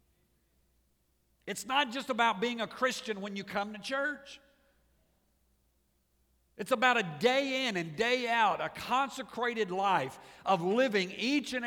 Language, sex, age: English, male, 50-69